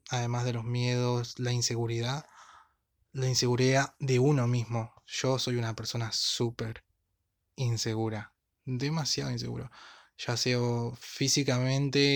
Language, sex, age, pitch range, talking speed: Spanish, male, 20-39, 115-130 Hz, 110 wpm